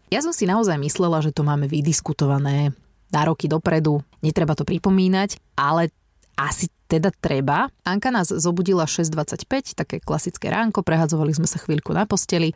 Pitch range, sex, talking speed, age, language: 150-195 Hz, female, 155 wpm, 20-39, Slovak